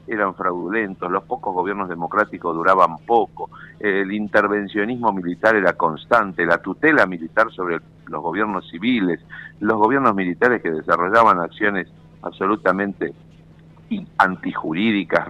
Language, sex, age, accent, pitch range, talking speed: Spanish, male, 50-69, Argentinian, 100-160 Hz, 110 wpm